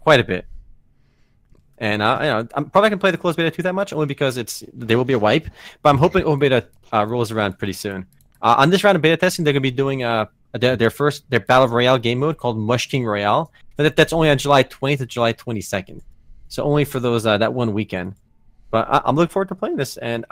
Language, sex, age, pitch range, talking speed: English, male, 30-49, 105-145 Hz, 255 wpm